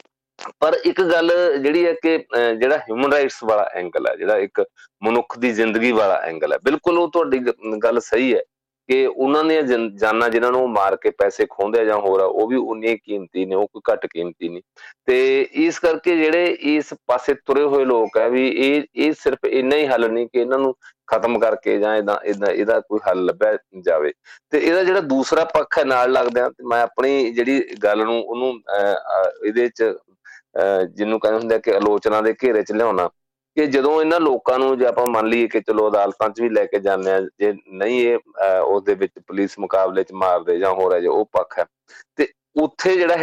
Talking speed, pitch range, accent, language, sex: 135 wpm, 105-155 Hz, Indian, English, male